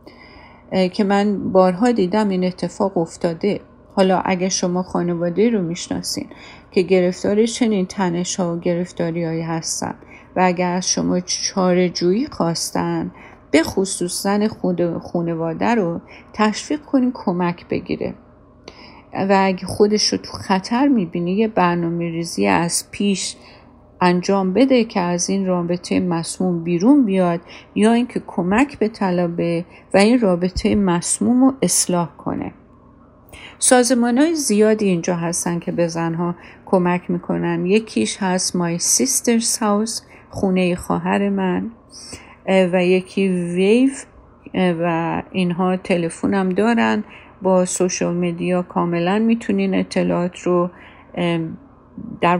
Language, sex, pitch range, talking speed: Persian, female, 175-205 Hz, 120 wpm